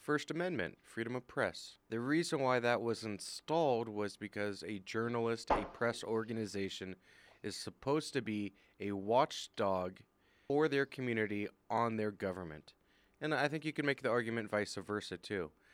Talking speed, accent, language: 155 wpm, American, English